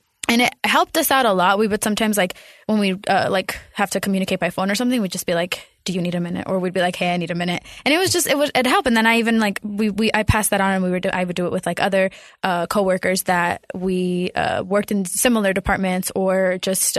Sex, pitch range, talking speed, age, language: female, 190-230 Hz, 285 wpm, 20-39, English